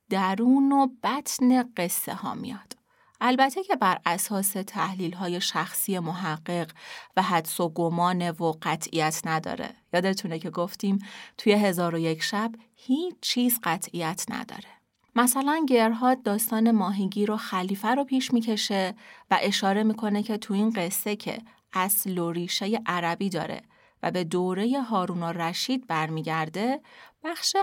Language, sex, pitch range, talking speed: Persian, female, 180-245 Hz, 135 wpm